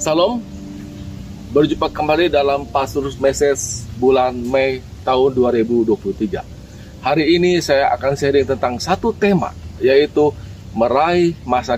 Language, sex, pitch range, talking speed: Indonesian, male, 110-150 Hz, 105 wpm